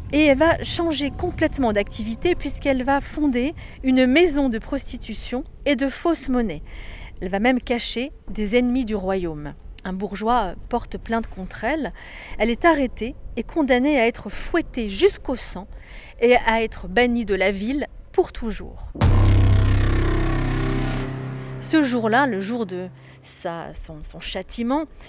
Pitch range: 205-280 Hz